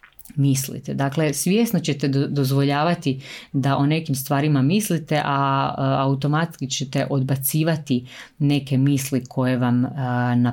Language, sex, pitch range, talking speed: Croatian, female, 125-150 Hz, 115 wpm